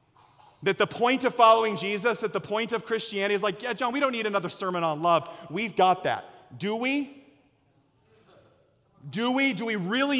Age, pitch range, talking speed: 30-49, 195-245 Hz, 190 wpm